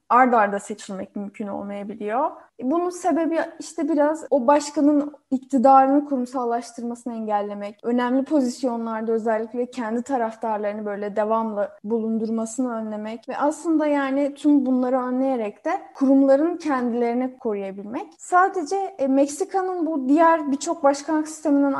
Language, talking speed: Turkish, 110 wpm